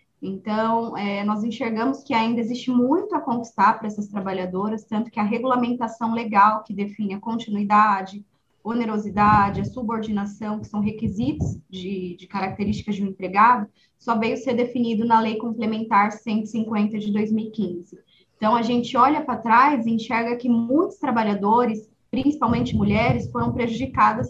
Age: 20-39